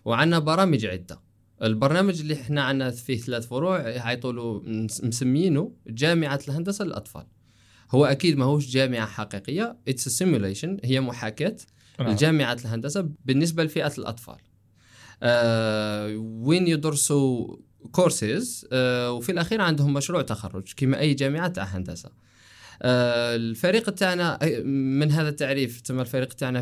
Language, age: Arabic, 20-39